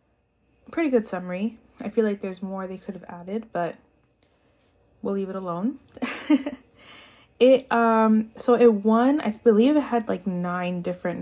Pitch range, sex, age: 180-220 Hz, female, 20-39